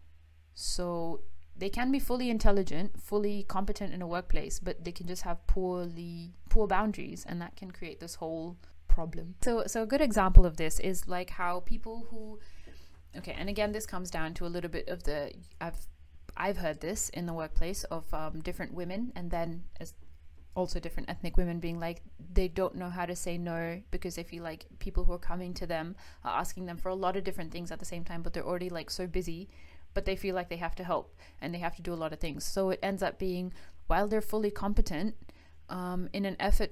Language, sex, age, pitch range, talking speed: English, female, 20-39, 160-190 Hz, 220 wpm